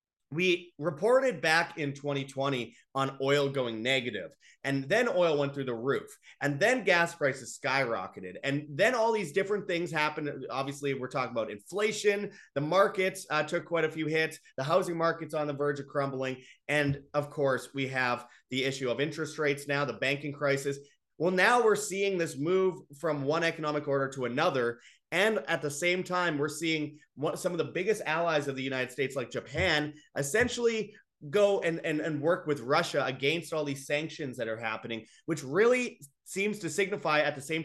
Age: 30-49